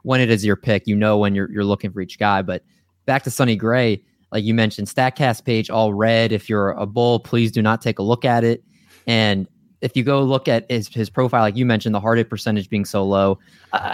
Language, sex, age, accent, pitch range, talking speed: English, male, 20-39, American, 105-125 Hz, 250 wpm